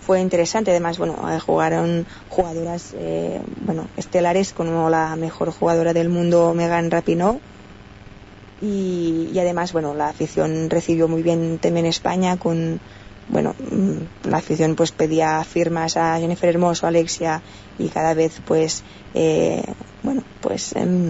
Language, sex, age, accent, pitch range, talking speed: Spanish, female, 20-39, Spanish, 165-190 Hz, 135 wpm